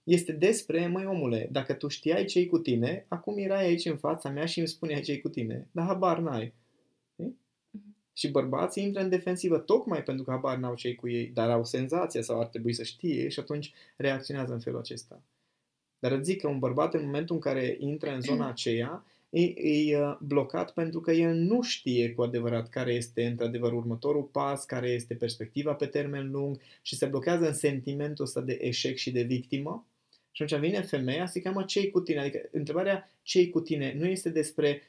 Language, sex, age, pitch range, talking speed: Romanian, male, 20-39, 120-160 Hz, 200 wpm